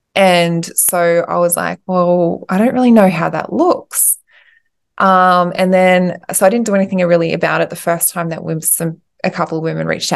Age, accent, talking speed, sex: 20-39, Australian, 200 wpm, female